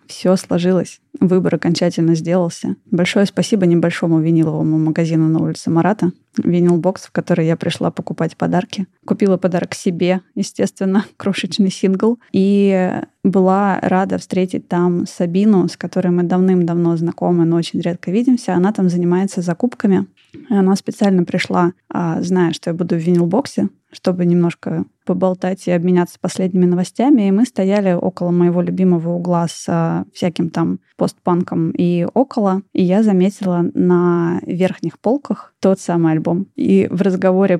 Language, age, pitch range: Russian, 20-39, 170-190 Hz